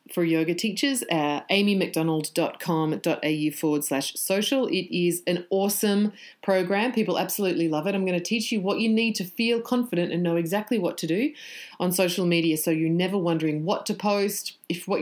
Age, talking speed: 30-49, 180 wpm